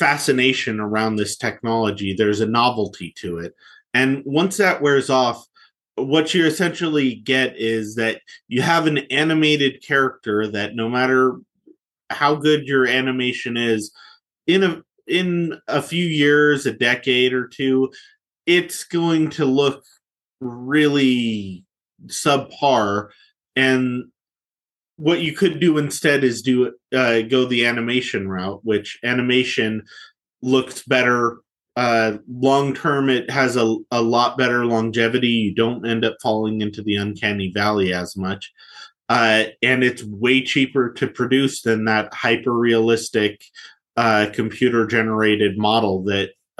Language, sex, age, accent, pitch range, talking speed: English, male, 30-49, American, 110-135 Hz, 130 wpm